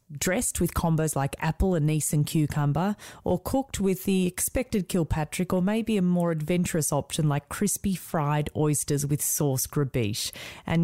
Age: 30-49